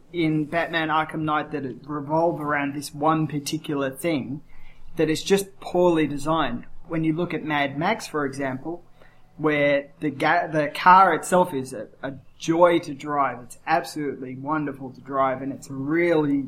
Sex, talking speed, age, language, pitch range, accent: male, 165 wpm, 20-39, English, 140-165 Hz, Australian